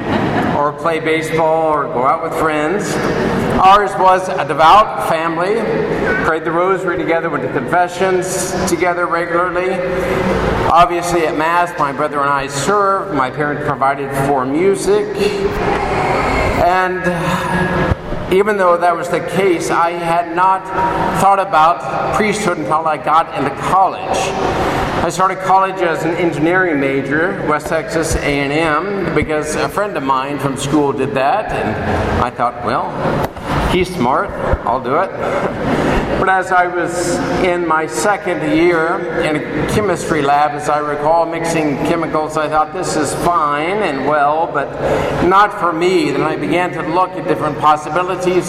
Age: 50-69